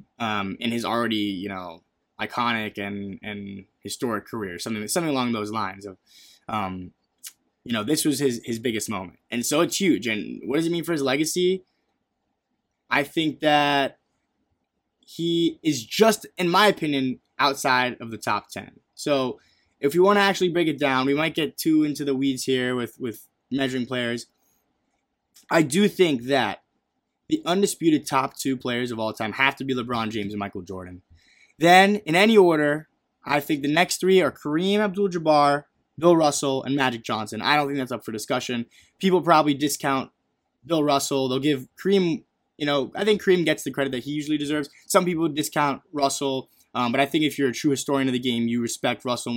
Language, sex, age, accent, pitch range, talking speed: English, male, 20-39, American, 120-155 Hz, 190 wpm